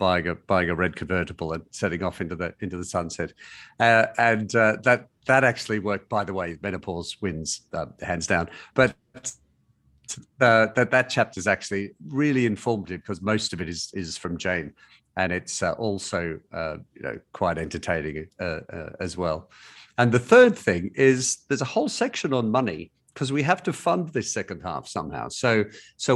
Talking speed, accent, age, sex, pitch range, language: 185 wpm, British, 50-69, male, 85-120 Hz, English